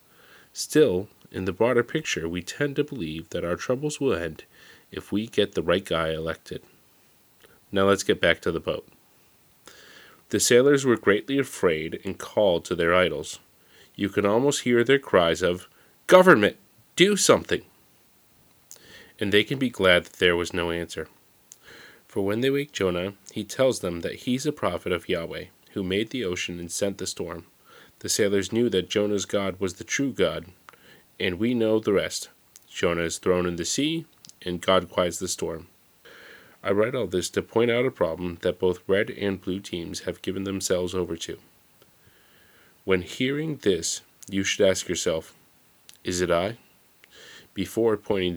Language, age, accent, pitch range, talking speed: English, 30-49, American, 90-120 Hz, 170 wpm